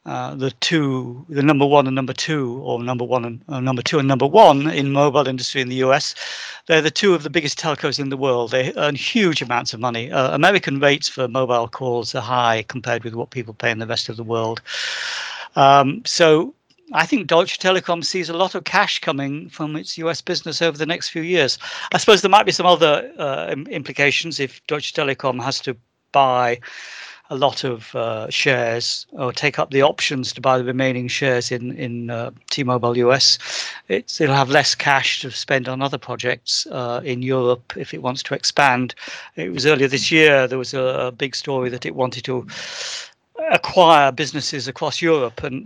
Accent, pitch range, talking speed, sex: British, 125-155 Hz, 200 wpm, male